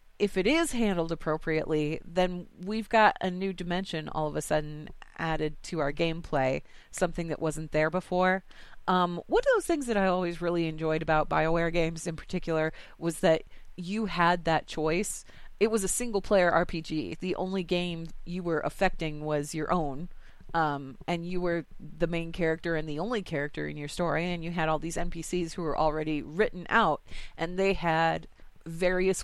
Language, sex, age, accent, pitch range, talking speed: English, female, 30-49, American, 160-190 Hz, 180 wpm